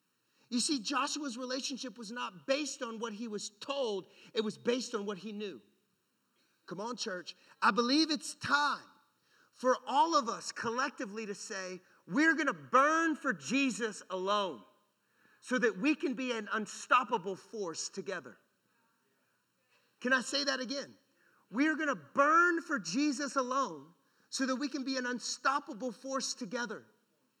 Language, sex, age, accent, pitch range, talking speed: English, male, 40-59, American, 235-285 Hz, 155 wpm